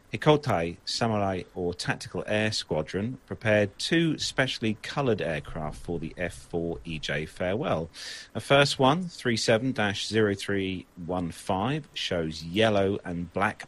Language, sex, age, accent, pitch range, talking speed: English, male, 40-59, British, 90-120 Hz, 100 wpm